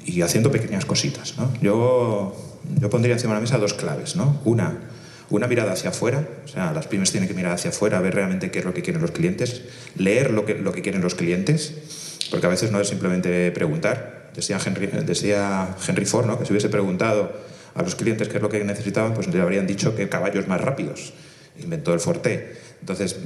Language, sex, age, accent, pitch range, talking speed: Spanish, male, 30-49, Spanish, 95-135 Hz, 215 wpm